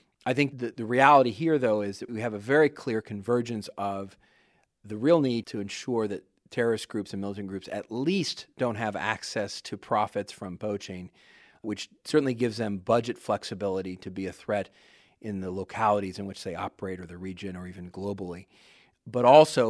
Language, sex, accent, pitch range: English, male, American, 95-110 Hz